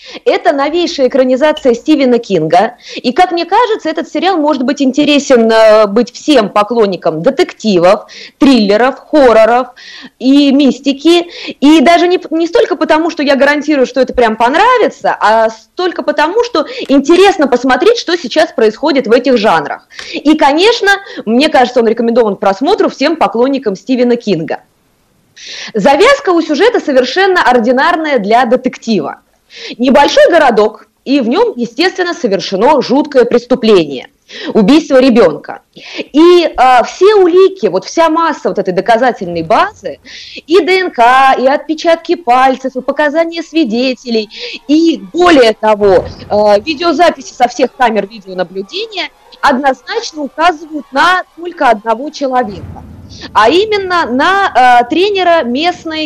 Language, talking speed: Russian, 125 wpm